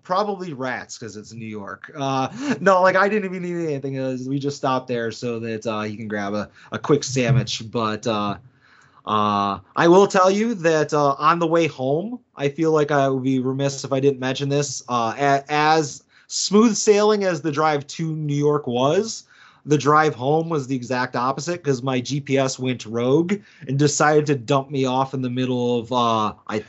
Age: 30-49